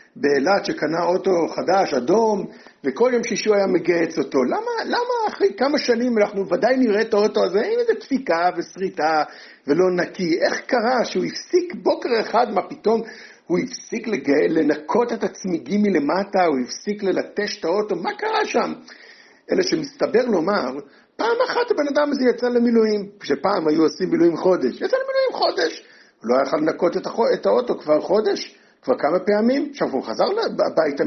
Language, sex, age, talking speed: Hebrew, male, 60-79, 160 wpm